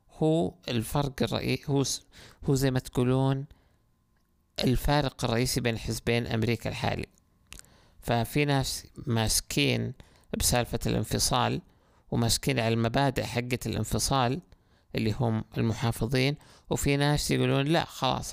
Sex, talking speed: male, 95 wpm